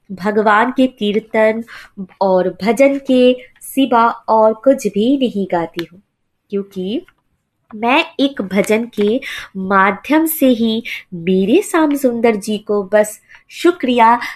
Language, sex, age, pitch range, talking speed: Hindi, female, 20-39, 205-290 Hz, 115 wpm